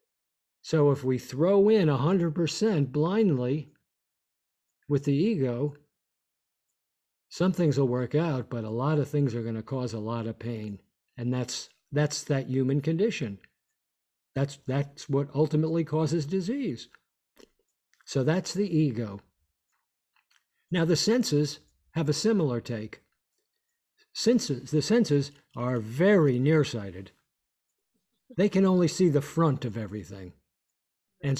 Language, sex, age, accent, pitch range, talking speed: English, male, 50-69, American, 120-165 Hz, 120 wpm